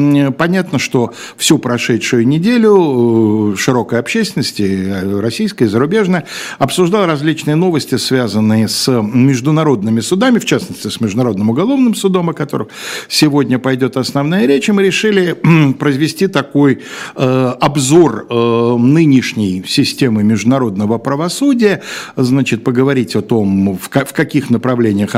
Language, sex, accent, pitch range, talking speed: Russian, male, native, 110-150 Hz, 105 wpm